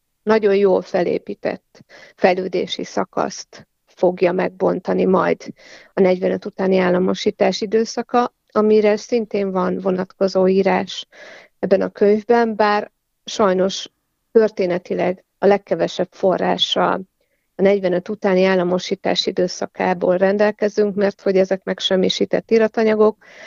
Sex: female